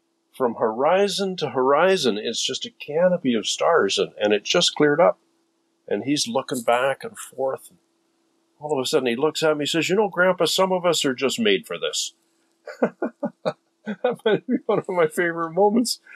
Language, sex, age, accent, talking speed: English, male, 50-69, American, 185 wpm